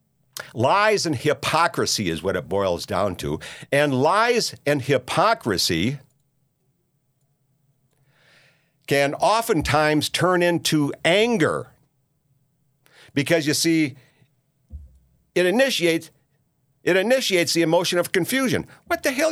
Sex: male